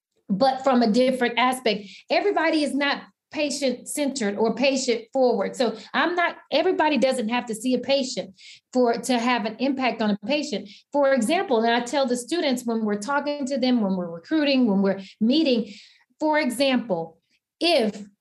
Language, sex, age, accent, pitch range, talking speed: English, female, 40-59, American, 215-275 Hz, 170 wpm